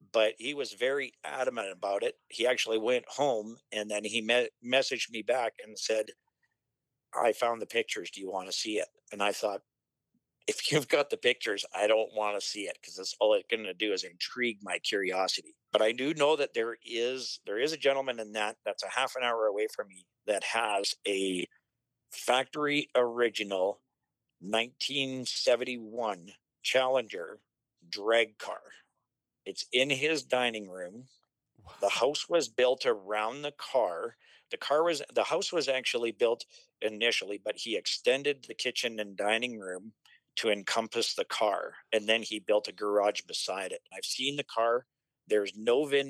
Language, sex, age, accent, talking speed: English, male, 50-69, American, 175 wpm